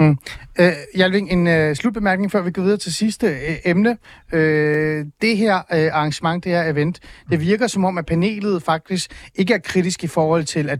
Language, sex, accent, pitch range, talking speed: Danish, male, native, 150-195 Hz, 195 wpm